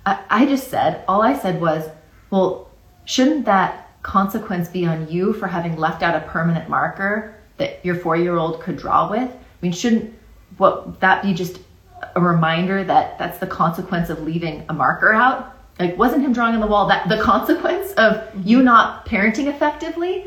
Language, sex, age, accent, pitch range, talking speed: English, female, 30-49, American, 170-230 Hz, 180 wpm